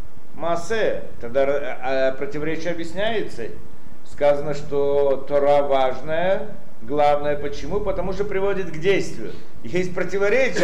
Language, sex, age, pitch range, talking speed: Russian, male, 50-69, 165-210 Hz, 95 wpm